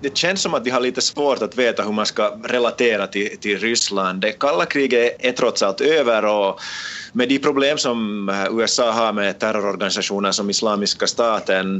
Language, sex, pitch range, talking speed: Swedish, male, 100-125 Hz, 180 wpm